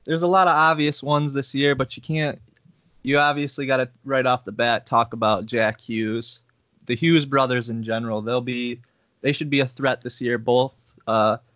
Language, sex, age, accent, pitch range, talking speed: English, male, 20-39, American, 110-135 Hz, 200 wpm